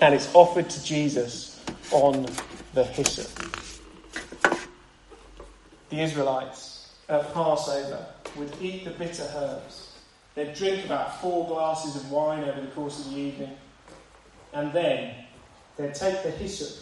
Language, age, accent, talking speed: English, 30-49, British, 130 wpm